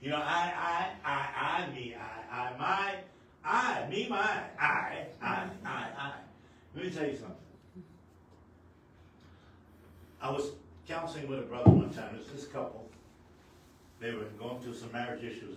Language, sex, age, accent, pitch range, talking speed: English, male, 60-79, American, 100-150 Hz, 160 wpm